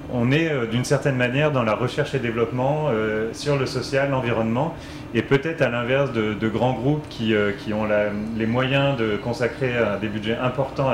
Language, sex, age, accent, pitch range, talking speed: French, male, 30-49, French, 110-140 Hz, 190 wpm